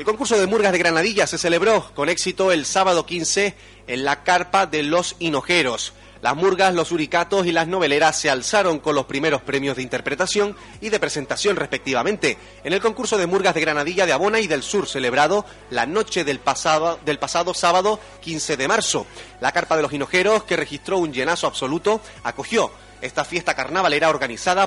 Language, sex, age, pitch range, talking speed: Spanish, male, 30-49, 145-195 Hz, 185 wpm